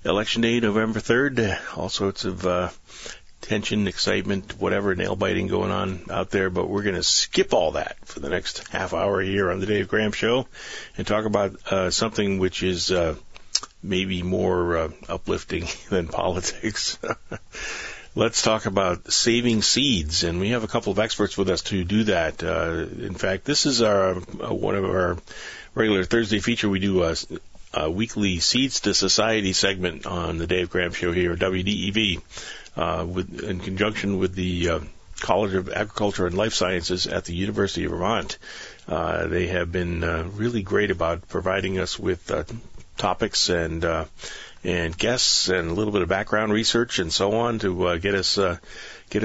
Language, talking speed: English, 180 wpm